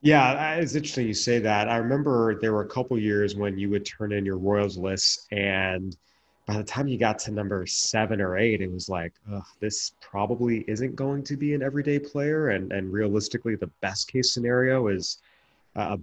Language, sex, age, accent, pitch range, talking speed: English, male, 30-49, American, 95-115 Hz, 200 wpm